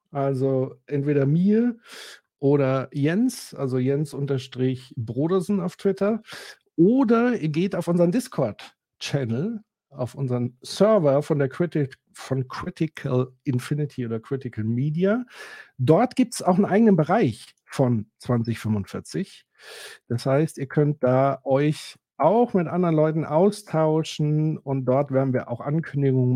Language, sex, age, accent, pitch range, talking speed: German, male, 50-69, German, 125-170 Hz, 115 wpm